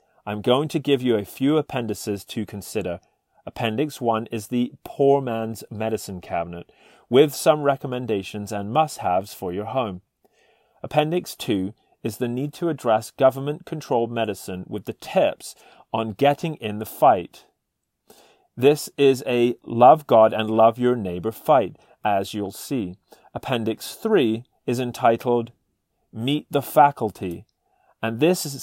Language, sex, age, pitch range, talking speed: English, male, 30-49, 110-140 Hz, 140 wpm